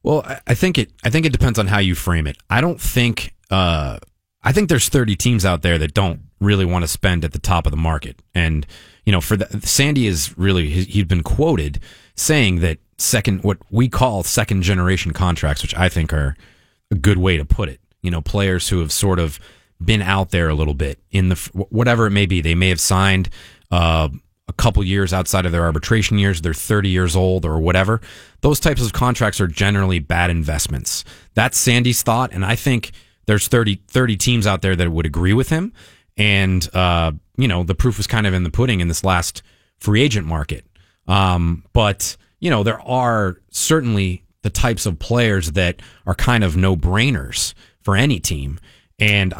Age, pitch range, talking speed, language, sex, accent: 30-49, 85-110 Hz, 205 wpm, English, male, American